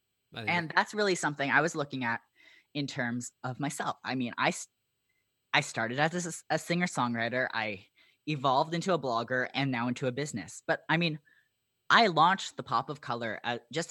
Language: English